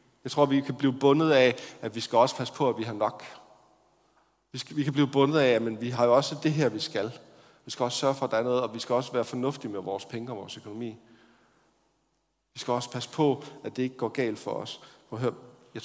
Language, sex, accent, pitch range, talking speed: Danish, male, native, 115-140 Hz, 260 wpm